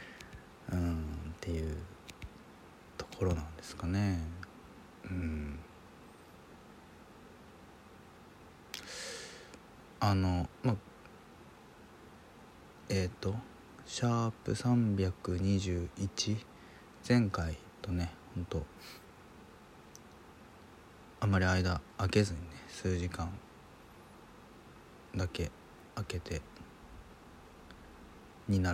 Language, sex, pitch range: Japanese, male, 85-105 Hz